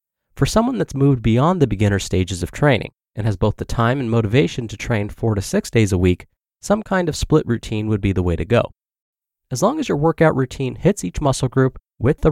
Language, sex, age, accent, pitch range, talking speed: English, male, 30-49, American, 100-150 Hz, 235 wpm